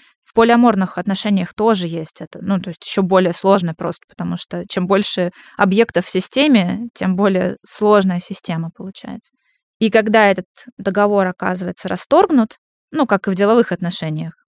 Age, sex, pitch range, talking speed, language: 20-39, female, 185-230 Hz, 155 wpm, Russian